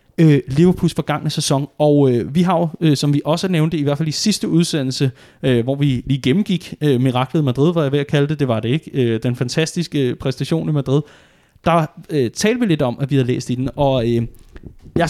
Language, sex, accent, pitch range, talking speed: Danish, male, native, 130-165 Hz, 240 wpm